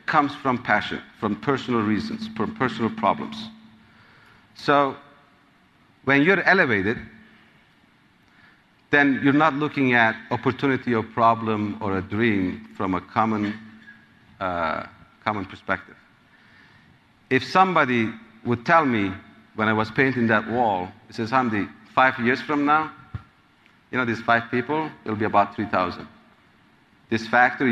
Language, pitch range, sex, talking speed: English, 110-150 Hz, male, 130 wpm